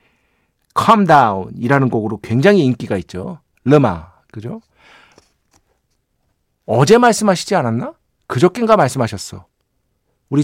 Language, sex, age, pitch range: Korean, male, 50-69, 115-170 Hz